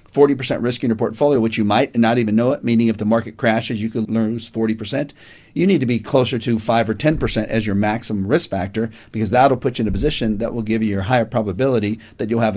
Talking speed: 250 wpm